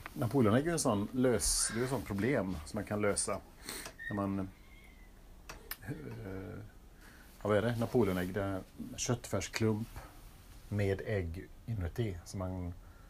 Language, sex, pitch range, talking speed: Swedish, male, 90-105 Hz, 115 wpm